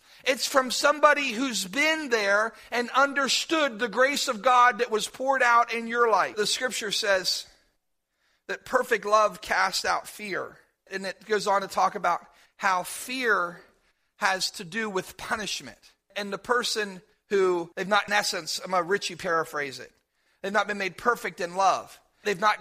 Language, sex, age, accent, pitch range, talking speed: English, male, 40-59, American, 175-225 Hz, 170 wpm